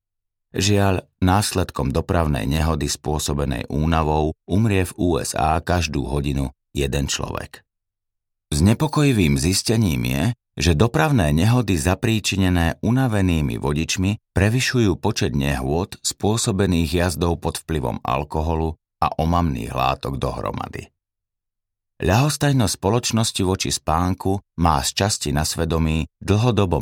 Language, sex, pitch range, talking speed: Slovak, male, 80-100 Hz, 100 wpm